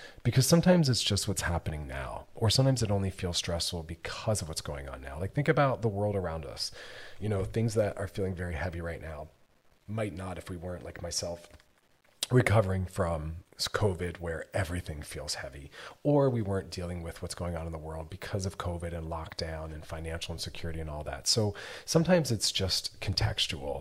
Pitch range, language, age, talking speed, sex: 85-105 Hz, English, 30-49, 195 wpm, male